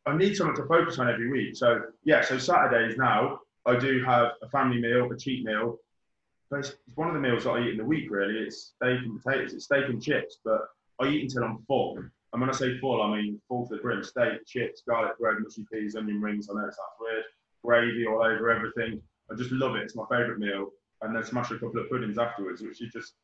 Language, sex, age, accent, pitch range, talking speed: English, male, 20-39, British, 110-135 Hz, 245 wpm